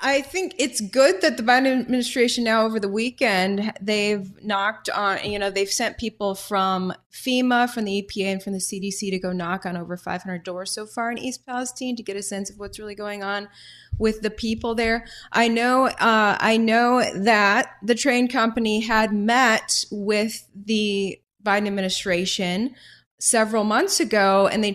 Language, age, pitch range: English, 20-39, 190-230 Hz